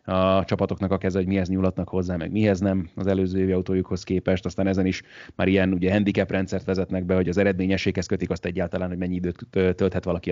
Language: Hungarian